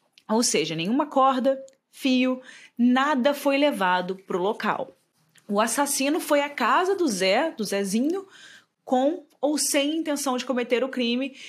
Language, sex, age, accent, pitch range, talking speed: Portuguese, female, 20-39, Brazilian, 215-280 Hz, 145 wpm